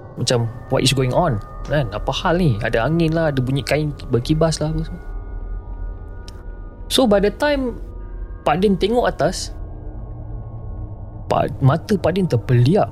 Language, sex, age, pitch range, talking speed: Malay, male, 20-39, 105-145 Hz, 135 wpm